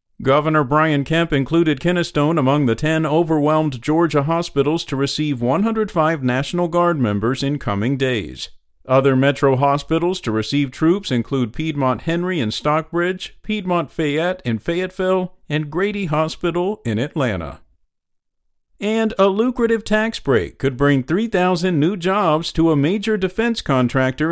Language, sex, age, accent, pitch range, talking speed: English, male, 50-69, American, 135-180 Hz, 135 wpm